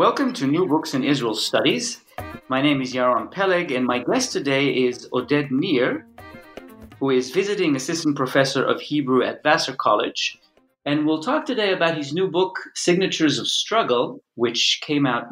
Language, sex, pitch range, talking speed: English, male, 125-160 Hz, 170 wpm